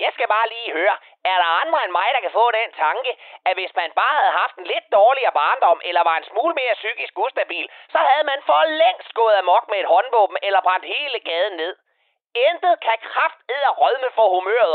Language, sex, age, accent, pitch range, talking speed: Danish, male, 30-49, native, 190-285 Hz, 215 wpm